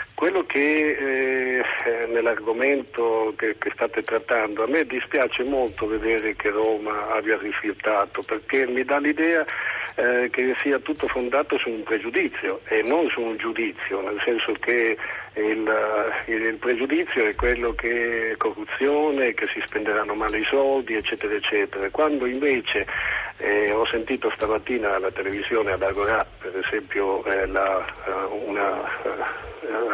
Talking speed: 135 wpm